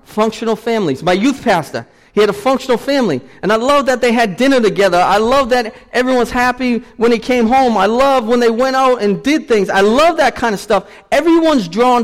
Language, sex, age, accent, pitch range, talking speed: English, male, 40-59, American, 150-235 Hz, 220 wpm